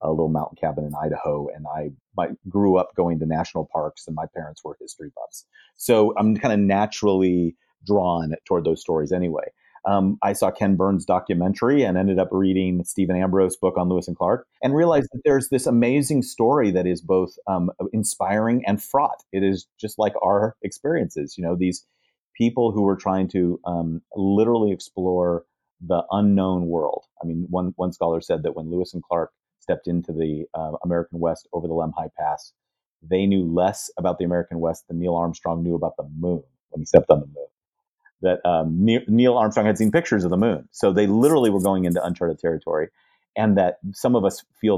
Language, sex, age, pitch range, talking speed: English, male, 40-59, 85-105 Hz, 195 wpm